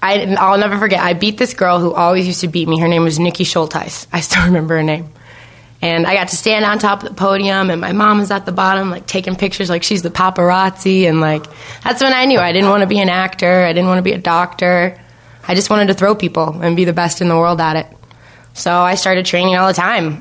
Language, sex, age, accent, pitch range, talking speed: English, female, 20-39, American, 165-190 Hz, 265 wpm